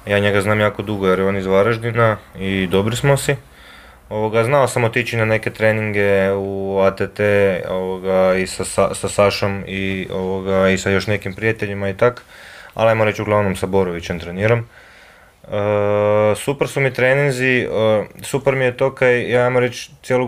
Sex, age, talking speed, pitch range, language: male, 20-39, 180 wpm, 100-125 Hz, Croatian